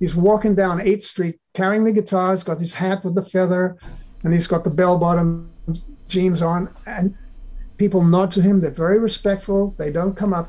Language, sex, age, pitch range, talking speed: English, male, 50-69, 160-195 Hz, 190 wpm